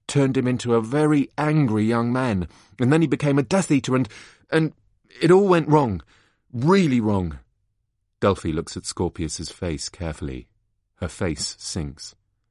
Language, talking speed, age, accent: English, 155 wpm, 30-49, British